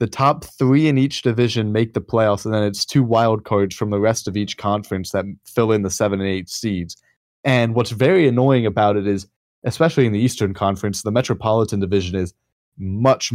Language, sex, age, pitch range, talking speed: English, male, 20-39, 100-125 Hz, 205 wpm